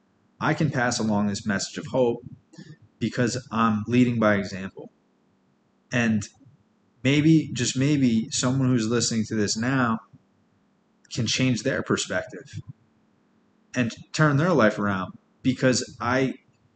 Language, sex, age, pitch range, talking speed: English, male, 20-39, 105-125 Hz, 120 wpm